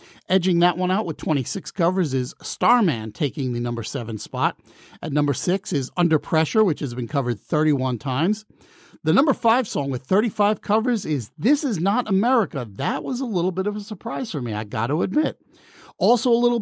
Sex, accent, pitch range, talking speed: male, American, 140-200 Hz, 200 wpm